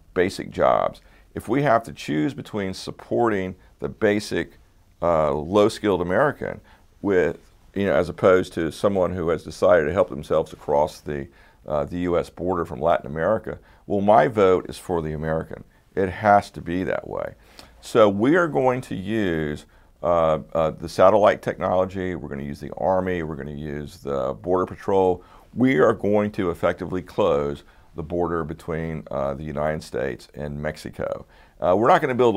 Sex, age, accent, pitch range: male, 50-69, American, 75-100 Hz